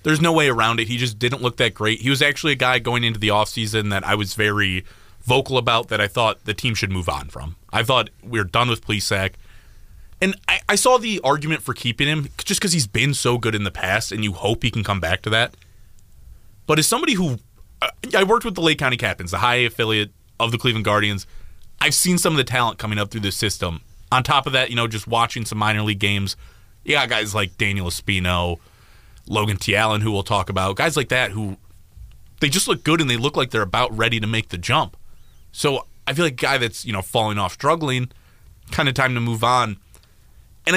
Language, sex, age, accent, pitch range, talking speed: English, male, 30-49, American, 100-135 Hz, 235 wpm